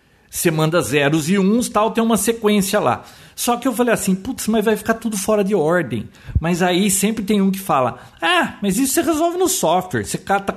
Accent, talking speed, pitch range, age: Brazilian, 220 wpm, 155-215 Hz, 50-69